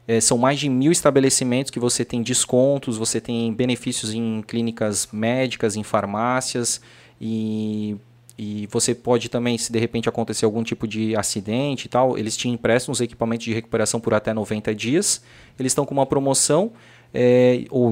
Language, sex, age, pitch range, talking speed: Portuguese, male, 20-39, 115-135 Hz, 170 wpm